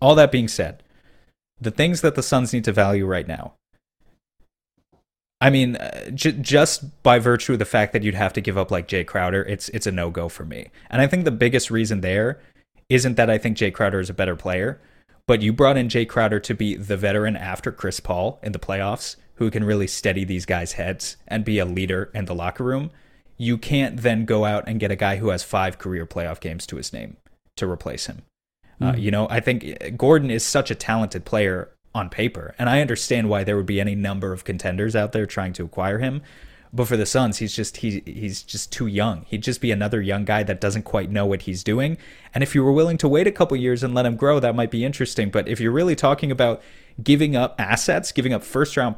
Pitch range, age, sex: 100-125 Hz, 30-49, male